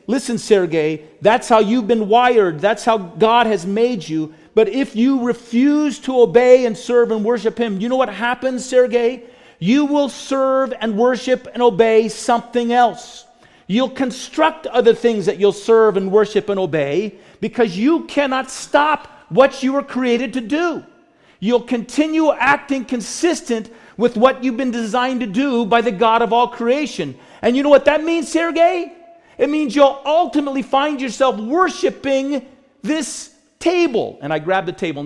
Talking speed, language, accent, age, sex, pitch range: 165 wpm, English, American, 40-59, male, 230-285 Hz